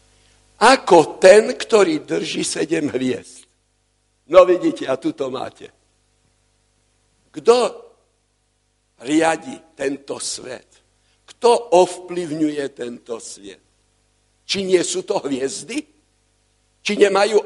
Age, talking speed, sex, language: 60-79, 90 wpm, male, Slovak